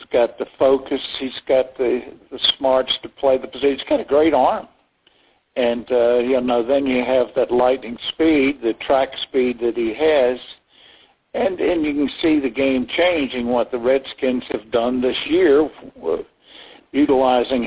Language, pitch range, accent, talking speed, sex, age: English, 125-155 Hz, American, 170 wpm, male, 60-79